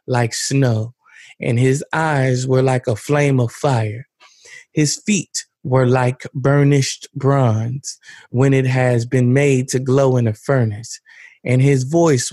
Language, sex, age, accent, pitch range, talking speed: English, male, 20-39, American, 125-145 Hz, 145 wpm